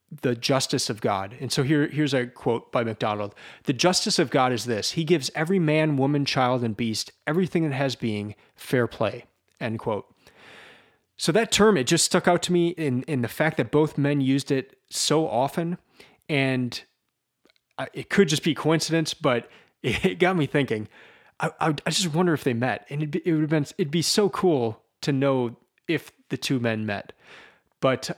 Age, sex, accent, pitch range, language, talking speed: 30-49, male, American, 120-160 Hz, English, 200 wpm